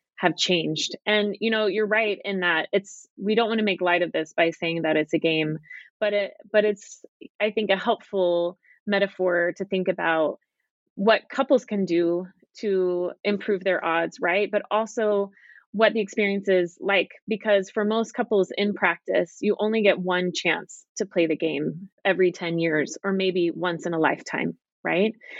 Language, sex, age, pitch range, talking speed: English, female, 20-39, 175-210 Hz, 180 wpm